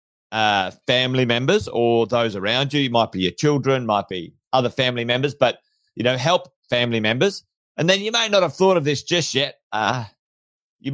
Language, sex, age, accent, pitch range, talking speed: English, male, 40-59, Australian, 120-155 Hz, 195 wpm